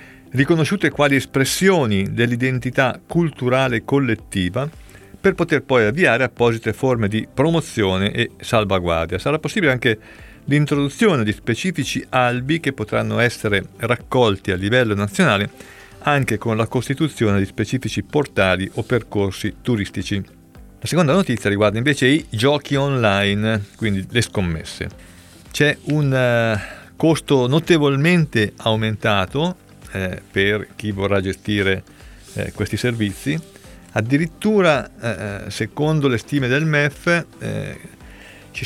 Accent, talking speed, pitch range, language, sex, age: native, 110 wpm, 100-140 Hz, Italian, male, 50-69